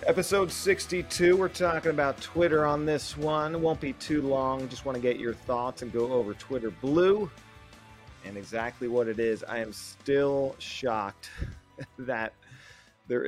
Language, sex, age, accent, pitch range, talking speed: English, male, 30-49, American, 110-140 Hz, 160 wpm